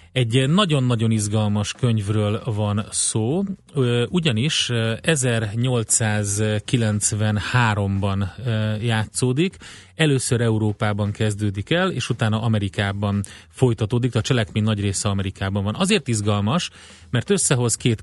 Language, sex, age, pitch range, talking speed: Hungarian, male, 30-49, 105-120 Hz, 95 wpm